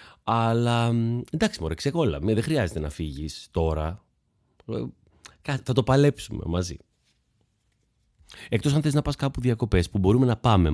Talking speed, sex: 135 wpm, male